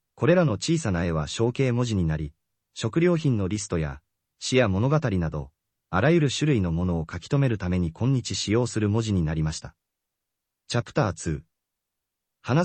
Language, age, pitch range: Japanese, 40-59, 85-130 Hz